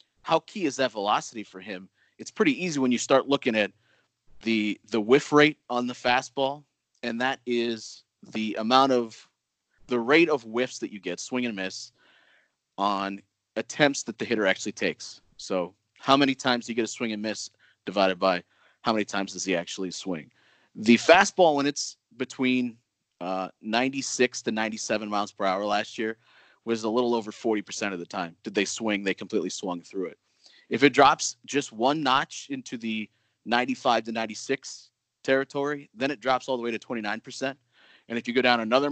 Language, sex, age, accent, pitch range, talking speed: English, male, 30-49, American, 110-135 Hz, 185 wpm